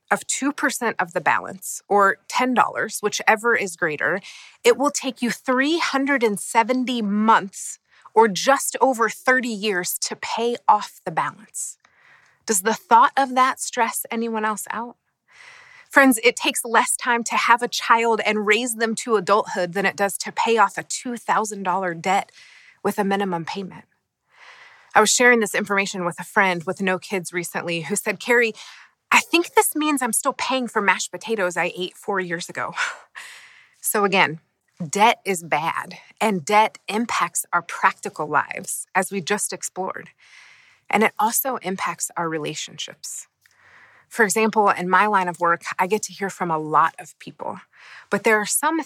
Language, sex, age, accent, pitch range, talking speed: English, female, 30-49, American, 185-240 Hz, 165 wpm